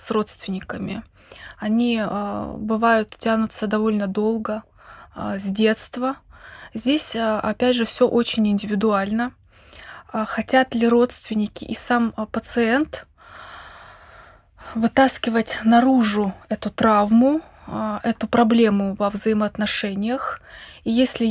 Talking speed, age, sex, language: 85 wpm, 20-39, female, Russian